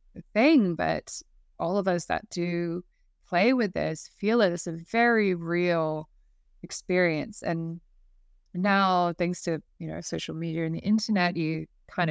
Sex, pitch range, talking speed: female, 150-175 Hz, 150 wpm